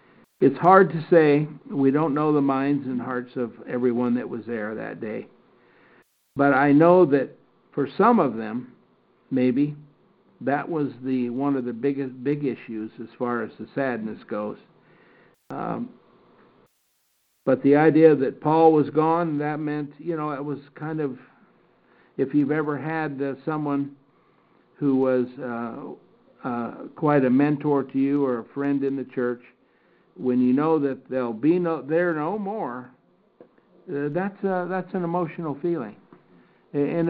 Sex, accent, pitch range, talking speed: male, American, 125-155 Hz, 155 wpm